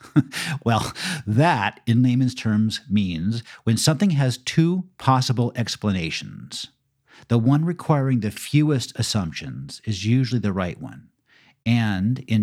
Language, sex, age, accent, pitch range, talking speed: English, male, 50-69, American, 105-140 Hz, 120 wpm